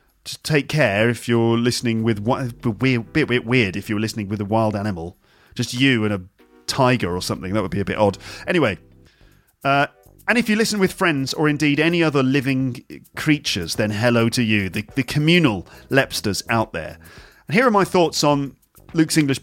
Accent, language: British, English